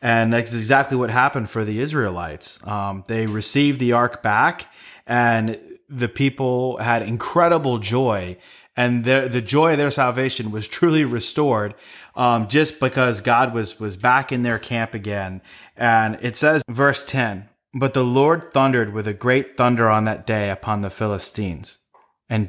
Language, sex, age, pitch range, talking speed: English, male, 30-49, 110-130 Hz, 165 wpm